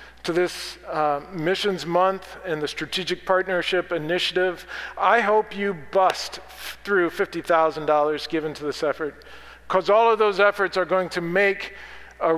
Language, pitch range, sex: English, 165-195 Hz, male